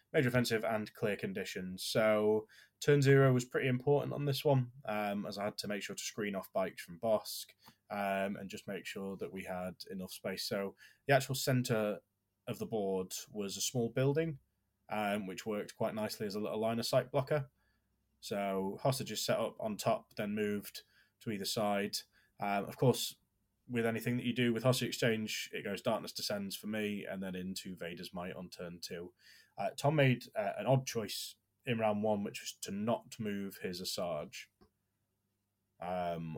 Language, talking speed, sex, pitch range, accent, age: English, 190 wpm, male, 95-120 Hz, British, 20-39